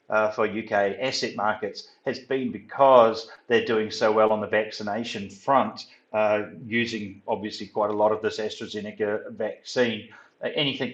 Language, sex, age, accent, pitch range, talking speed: English, male, 40-59, Australian, 105-120 Hz, 150 wpm